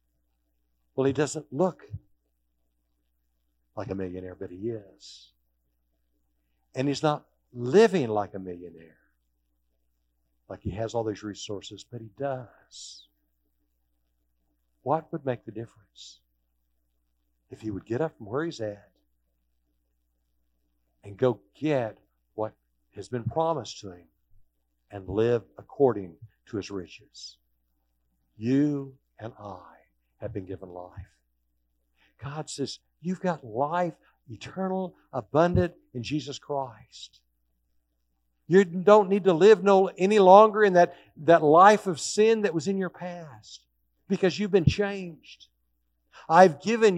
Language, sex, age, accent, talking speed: English, male, 60-79, American, 125 wpm